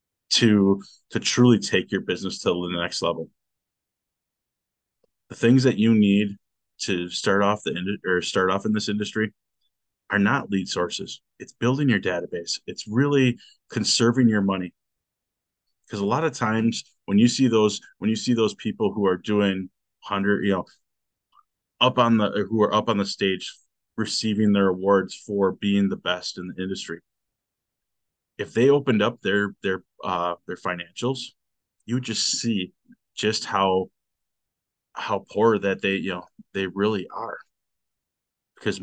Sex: male